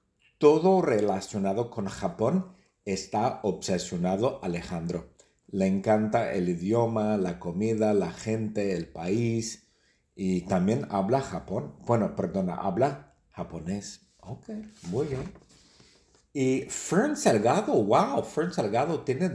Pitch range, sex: 95-135 Hz, male